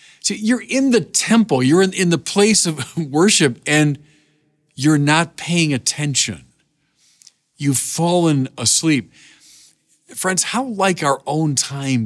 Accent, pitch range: American, 115-155 Hz